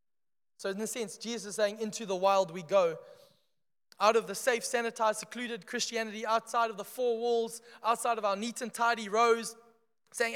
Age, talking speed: 20-39, 185 wpm